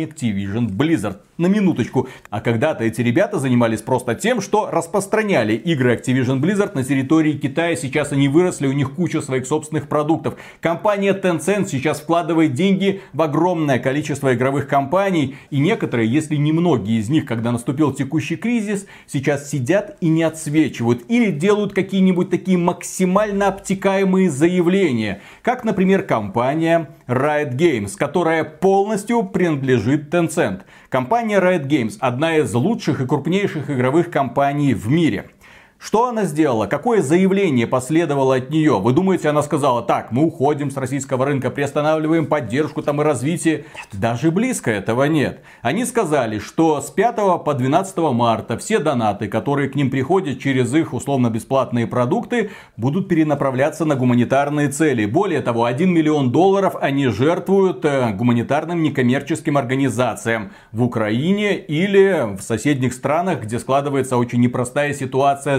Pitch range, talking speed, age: 130-175 Hz, 140 wpm, 40-59